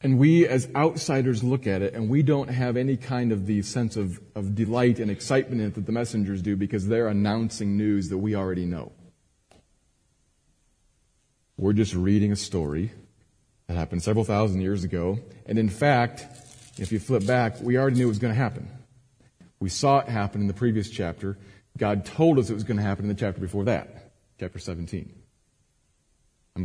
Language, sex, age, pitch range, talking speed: English, male, 40-59, 95-125 Hz, 195 wpm